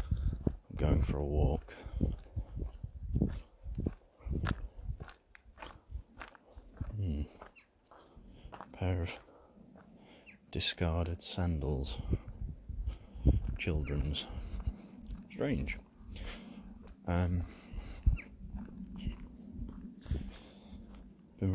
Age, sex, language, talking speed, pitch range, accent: 40-59, male, English, 35 wpm, 70-90 Hz, British